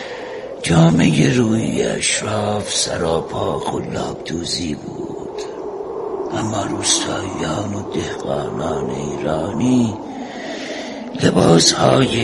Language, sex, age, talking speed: Persian, male, 60-79, 65 wpm